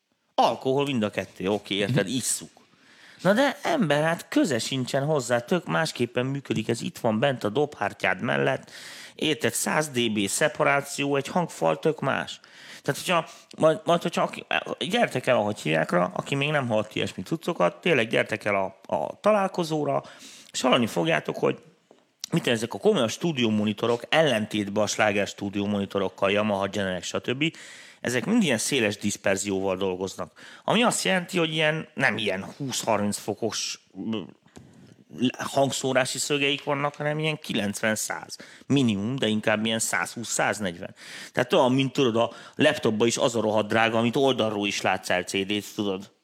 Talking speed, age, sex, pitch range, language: 150 wpm, 30-49, male, 105-145 Hz, Hungarian